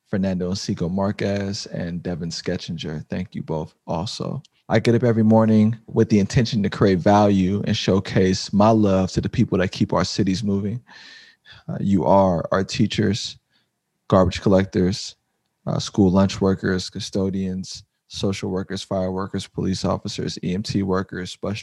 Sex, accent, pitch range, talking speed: male, American, 95-105 Hz, 145 wpm